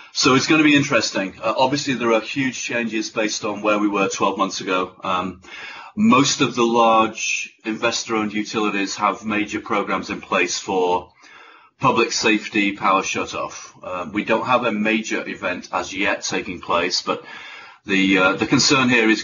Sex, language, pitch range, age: male, English, 100-130 Hz, 30-49